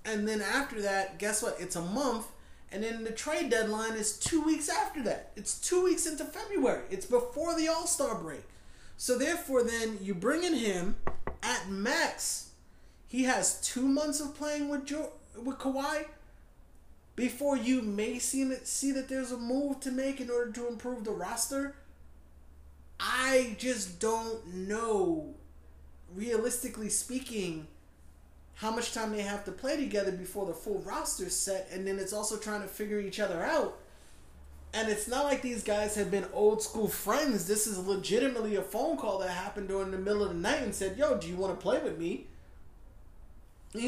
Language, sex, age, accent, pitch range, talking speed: English, male, 30-49, American, 190-255 Hz, 180 wpm